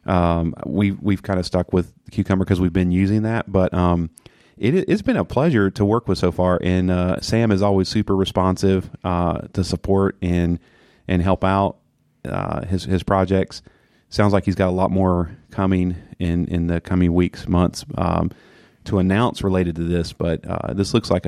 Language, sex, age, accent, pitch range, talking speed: English, male, 30-49, American, 90-100 Hz, 190 wpm